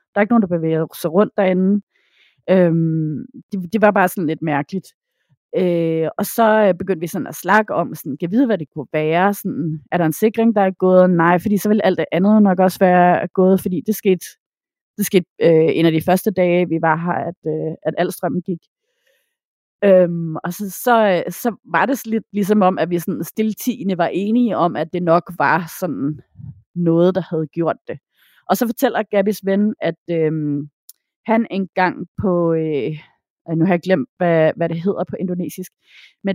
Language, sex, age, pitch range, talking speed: Danish, female, 30-49, 165-205 Hz, 205 wpm